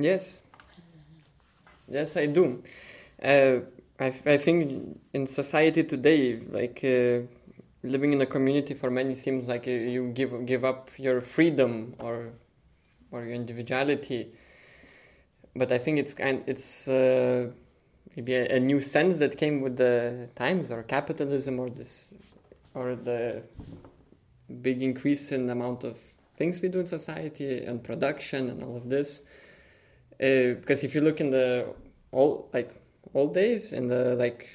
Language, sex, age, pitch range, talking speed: English, male, 20-39, 125-145 Hz, 155 wpm